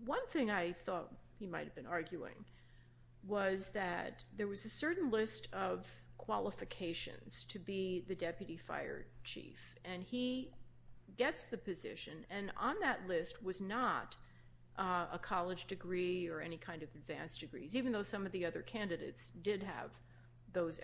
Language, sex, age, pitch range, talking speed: English, female, 40-59, 165-205 Hz, 160 wpm